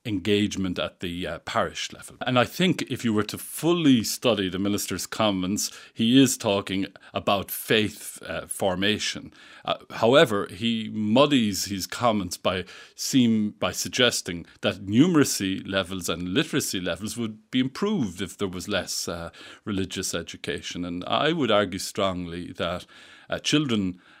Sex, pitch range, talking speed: male, 95-115 Hz, 145 wpm